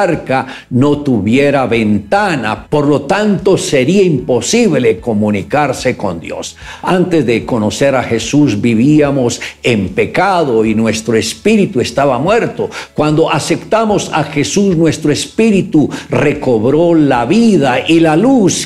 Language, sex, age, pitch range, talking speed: Spanish, male, 60-79, 125-170 Hz, 115 wpm